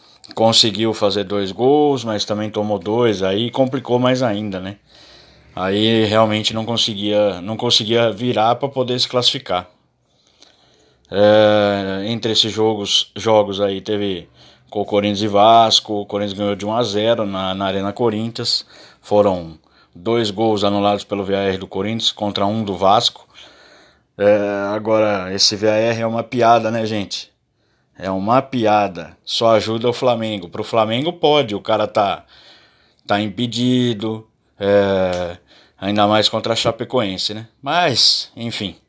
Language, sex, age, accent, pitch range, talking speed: Portuguese, male, 20-39, Brazilian, 100-115 Hz, 145 wpm